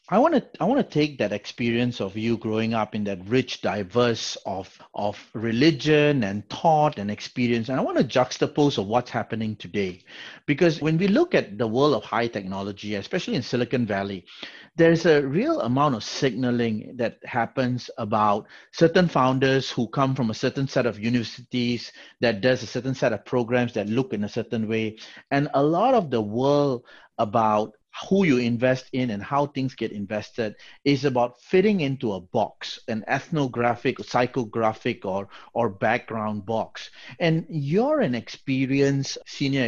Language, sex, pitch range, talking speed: English, male, 115-140 Hz, 170 wpm